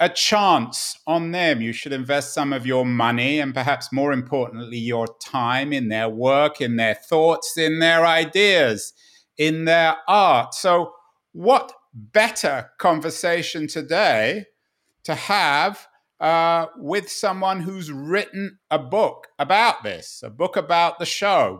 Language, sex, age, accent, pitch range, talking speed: English, male, 50-69, British, 145-185 Hz, 140 wpm